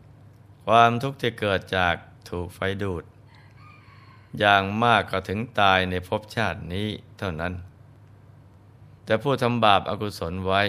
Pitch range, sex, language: 95-115 Hz, male, Thai